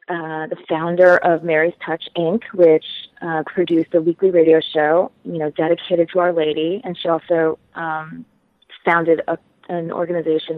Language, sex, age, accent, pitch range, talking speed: English, female, 20-39, American, 160-185 Hz, 155 wpm